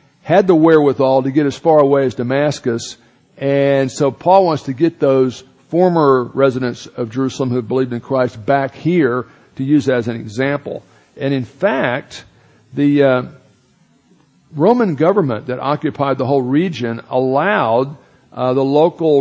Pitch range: 120-145 Hz